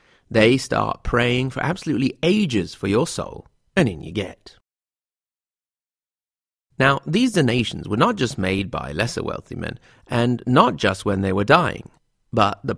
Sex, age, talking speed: male, 40-59, 155 wpm